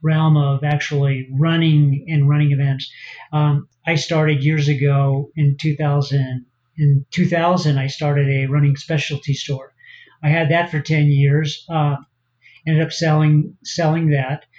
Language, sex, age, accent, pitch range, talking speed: English, male, 40-59, American, 140-155 Hz, 140 wpm